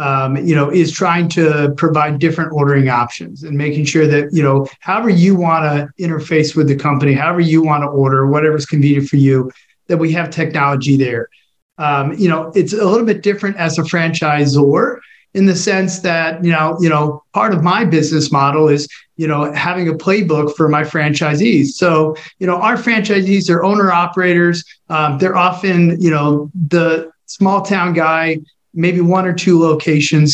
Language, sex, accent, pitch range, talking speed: English, male, American, 150-180 Hz, 185 wpm